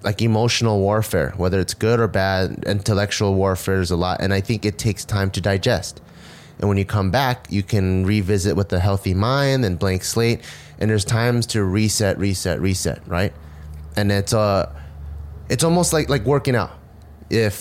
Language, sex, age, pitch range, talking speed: English, male, 30-49, 95-115 Hz, 185 wpm